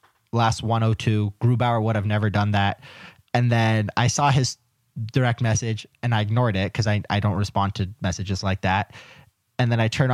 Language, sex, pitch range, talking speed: English, male, 105-120 Hz, 200 wpm